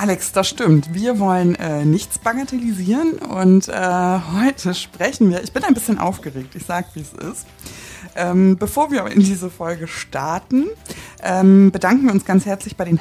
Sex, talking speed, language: female, 170 wpm, German